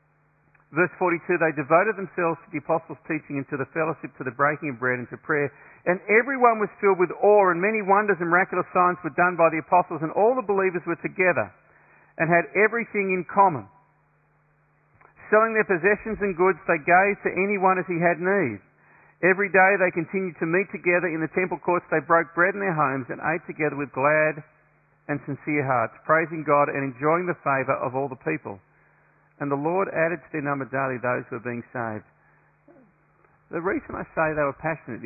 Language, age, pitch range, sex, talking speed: English, 50-69, 135-180 Hz, male, 200 wpm